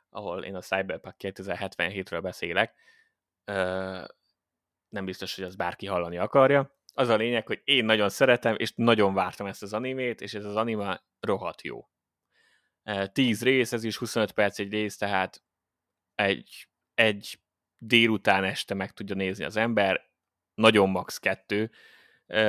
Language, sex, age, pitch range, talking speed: Hungarian, male, 20-39, 95-115 Hz, 140 wpm